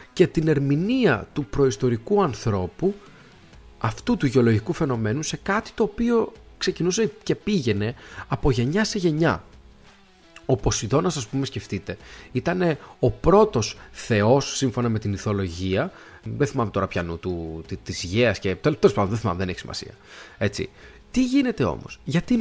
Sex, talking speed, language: male, 145 wpm, Greek